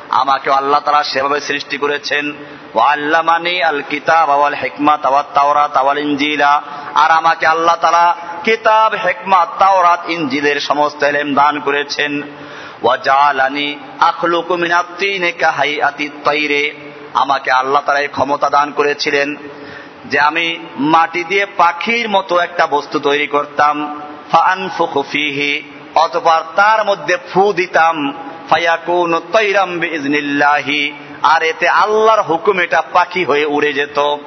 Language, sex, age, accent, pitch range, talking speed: Bengali, male, 50-69, native, 145-195 Hz, 50 wpm